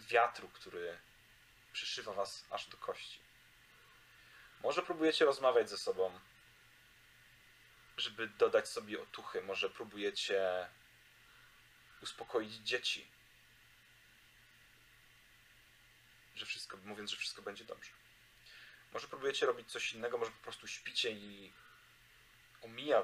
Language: Polish